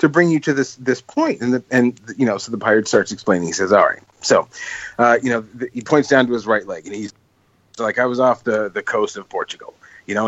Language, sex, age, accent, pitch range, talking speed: English, male, 30-49, American, 105-125 Hz, 275 wpm